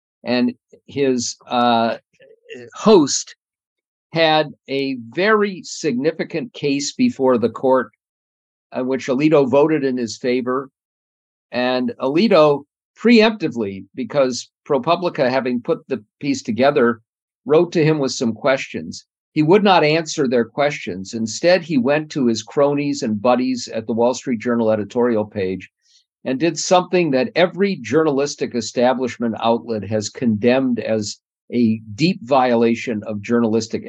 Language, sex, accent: English, male, American